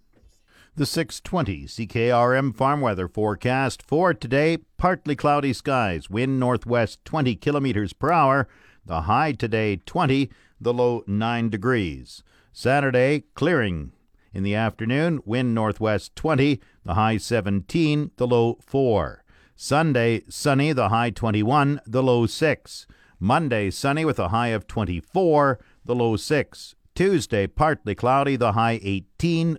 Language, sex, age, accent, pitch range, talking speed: English, male, 50-69, American, 110-145 Hz, 130 wpm